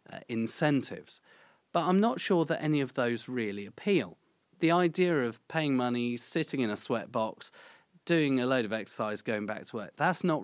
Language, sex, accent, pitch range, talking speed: English, male, British, 120-160 Hz, 190 wpm